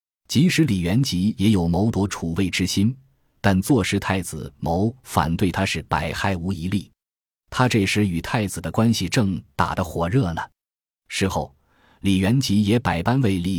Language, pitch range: Chinese, 85-115 Hz